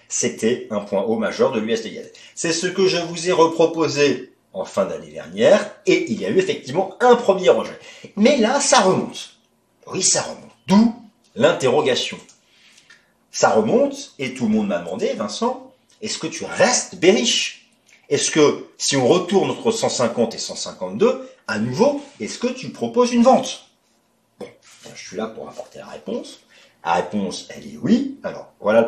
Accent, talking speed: French, 175 wpm